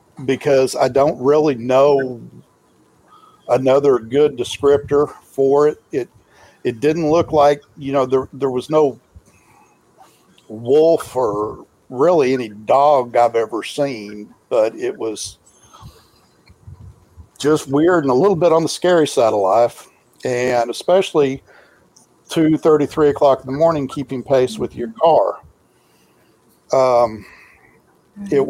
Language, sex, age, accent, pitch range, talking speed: English, male, 60-79, American, 125-155 Hz, 125 wpm